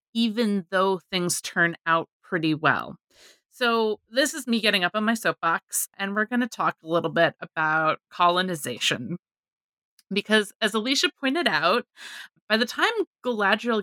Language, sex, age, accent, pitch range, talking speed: English, female, 20-39, American, 170-220 Hz, 150 wpm